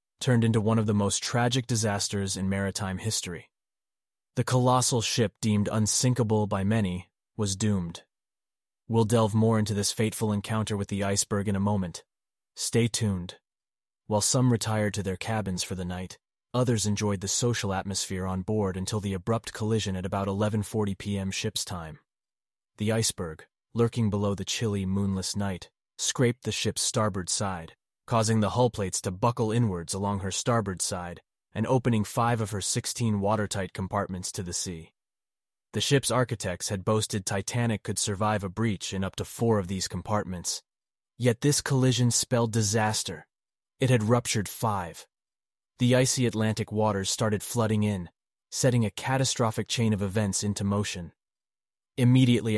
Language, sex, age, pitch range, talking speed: English, male, 30-49, 95-115 Hz, 155 wpm